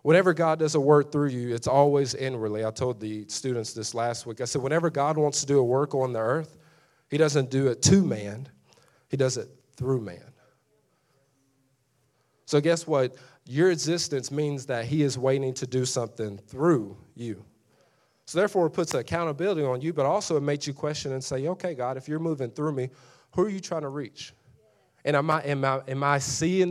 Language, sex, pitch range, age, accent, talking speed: English, male, 120-150 Hz, 40-59, American, 205 wpm